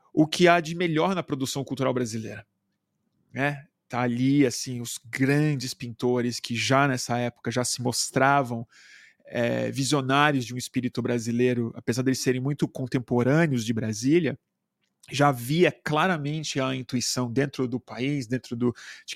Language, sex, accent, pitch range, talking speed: Portuguese, male, Brazilian, 120-145 Hz, 145 wpm